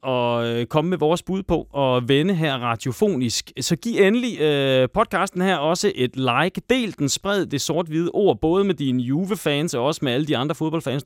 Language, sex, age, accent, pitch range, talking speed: Danish, male, 30-49, native, 120-165 Hz, 190 wpm